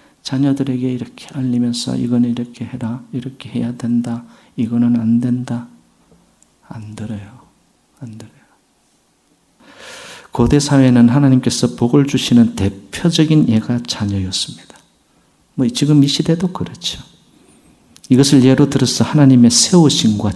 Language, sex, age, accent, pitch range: Korean, male, 50-69, native, 110-135 Hz